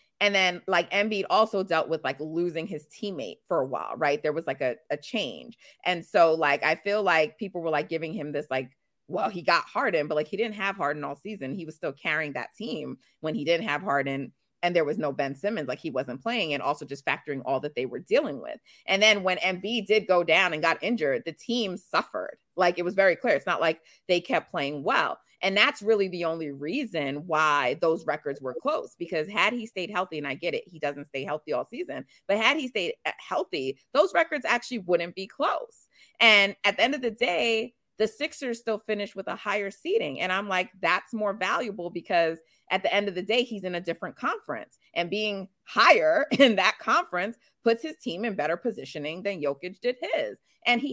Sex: female